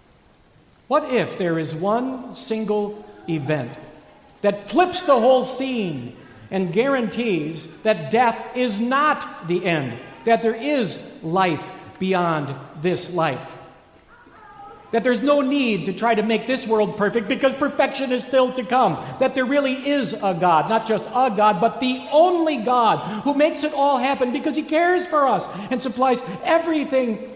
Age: 50-69